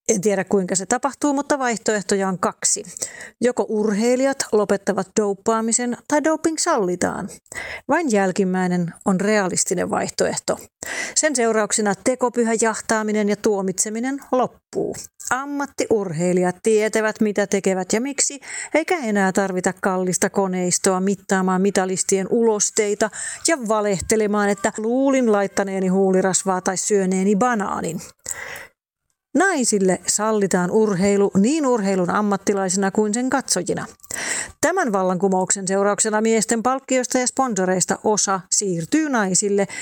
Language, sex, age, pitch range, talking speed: Finnish, female, 40-59, 195-235 Hz, 105 wpm